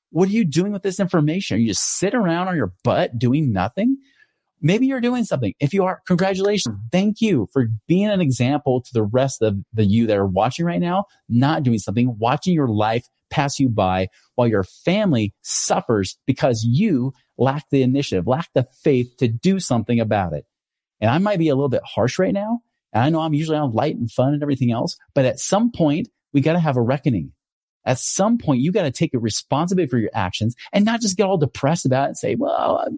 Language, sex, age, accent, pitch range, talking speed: English, male, 30-49, American, 115-185 Hz, 225 wpm